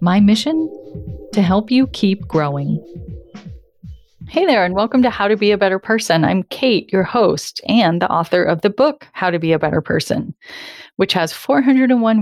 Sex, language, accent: female, English, American